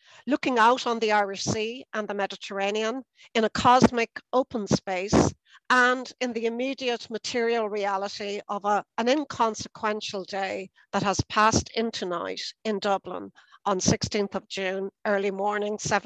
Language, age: English, 60-79